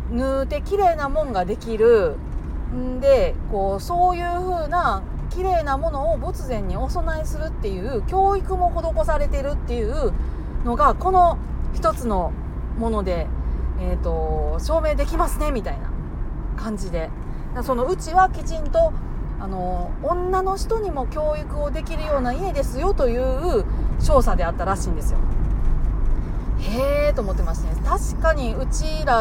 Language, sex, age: Japanese, female, 40-59